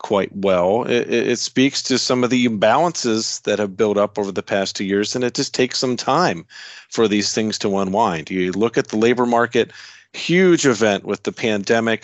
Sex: male